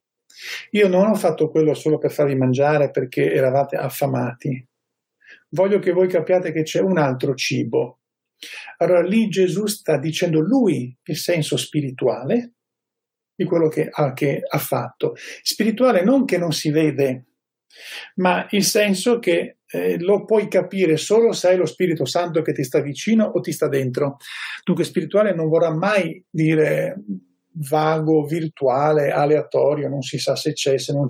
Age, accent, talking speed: 50-69, native, 155 wpm